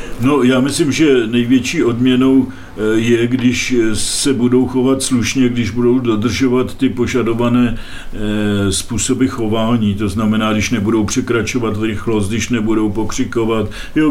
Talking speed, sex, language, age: 125 wpm, male, Czech, 50-69